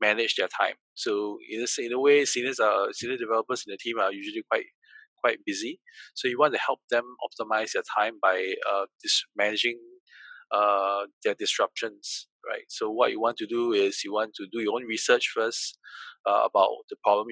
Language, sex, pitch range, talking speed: English, male, 315-455 Hz, 200 wpm